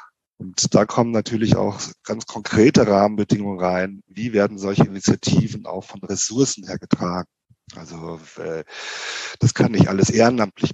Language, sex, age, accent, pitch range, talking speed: German, male, 40-59, German, 90-115 Hz, 135 wpm